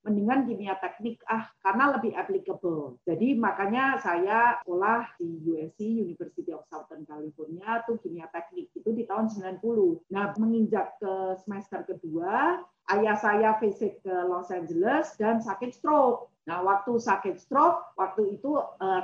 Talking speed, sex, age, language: 140 wpm, female, 40-59, Indonesian